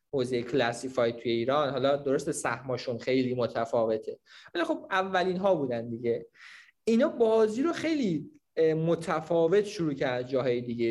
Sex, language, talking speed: male, Persian, 125 wpm